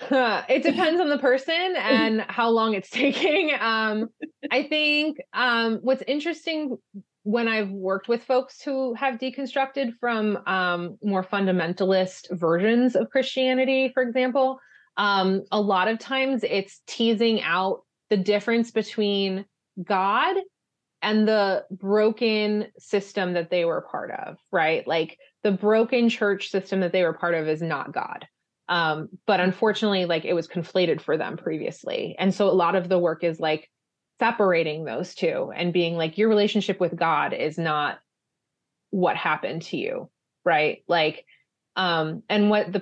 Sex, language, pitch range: female, English, 170-235 Hz